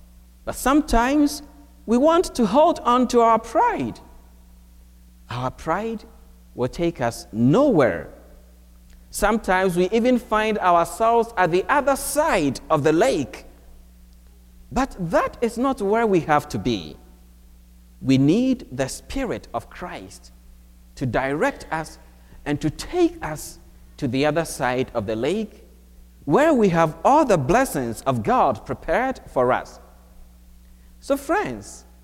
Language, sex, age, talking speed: English, male, 50-69, 130 wpm